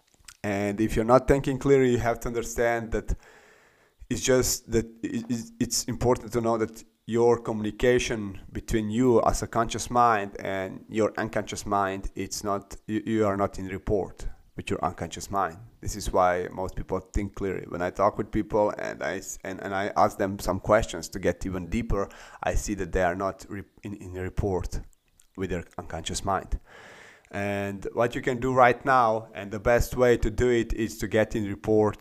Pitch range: 95-115 Hz